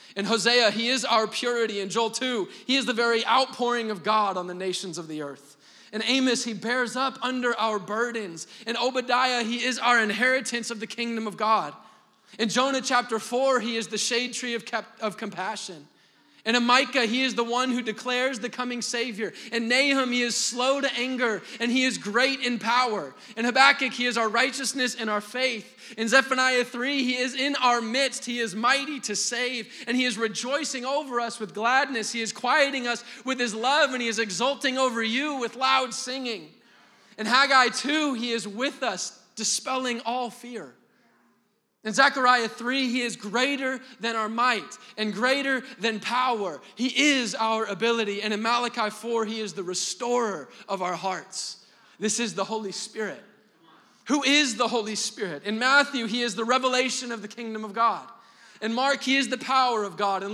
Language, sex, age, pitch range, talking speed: English, male, 20-39, 220-255 Hz, 190 wpm